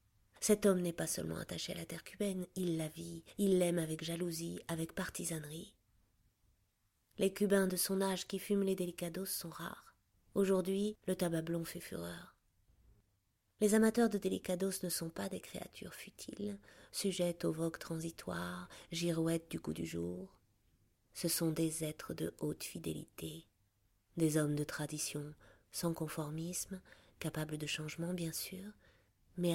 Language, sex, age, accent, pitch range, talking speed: French, female, 30-49, French, 115-175 Hz, 150 wpm